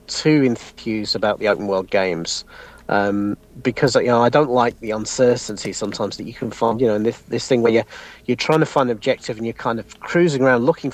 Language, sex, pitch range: English, male, 120-160 Hz